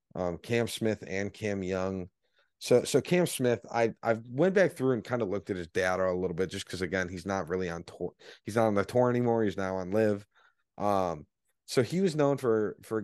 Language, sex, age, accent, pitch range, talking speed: English, male, 30-49, American, 95-125 Hz, 235 wpm